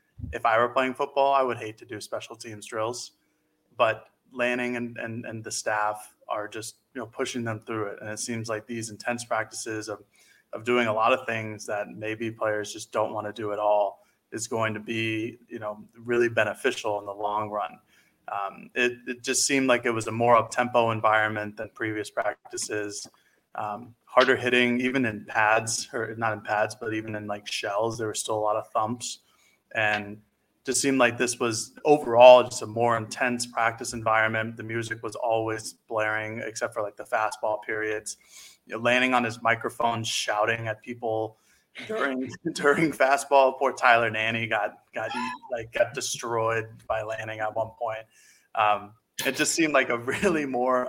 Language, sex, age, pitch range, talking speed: English, male, 20-39, 110-120 Hz, 190 wpm